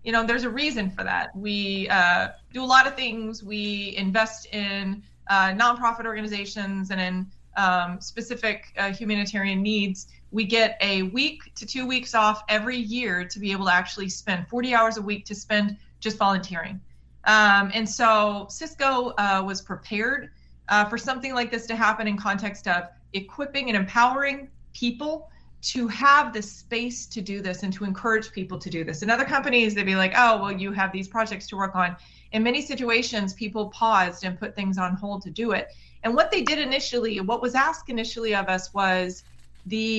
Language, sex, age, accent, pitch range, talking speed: English, female, 30-49, American, 195-230 Hz, 190 wpm